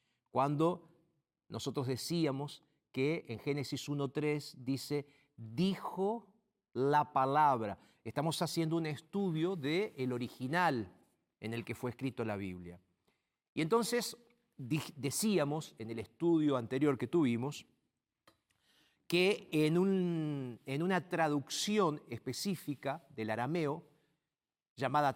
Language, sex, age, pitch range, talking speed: Spanish, male, 50-69, 130-170 Hz, 100 wpm